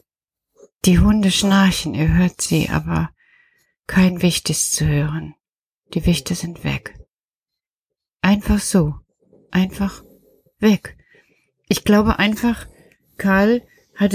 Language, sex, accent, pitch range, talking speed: German, female, German, 160-195 Hz, 105 wpm